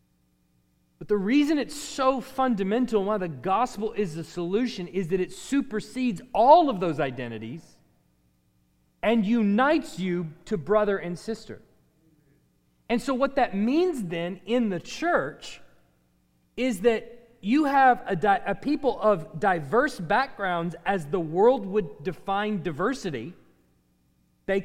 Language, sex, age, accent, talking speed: English, male, 30-49, American, 130 wpm